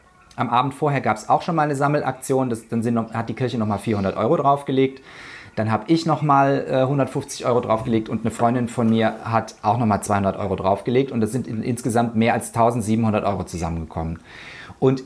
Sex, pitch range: male, 115-140 Hz